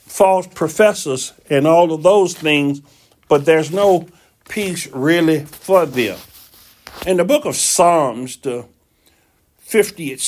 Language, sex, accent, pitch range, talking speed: English, male, American, 135-185 Hz, 125 wpm